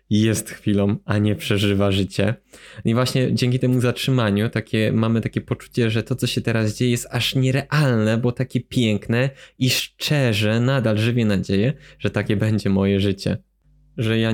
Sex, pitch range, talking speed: male, 110-130 Hz, 160 wpm